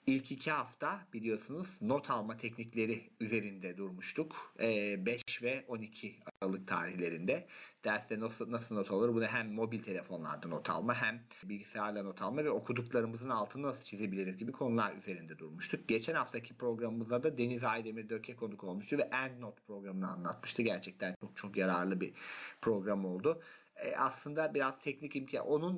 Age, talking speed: 40-59, 150 wpm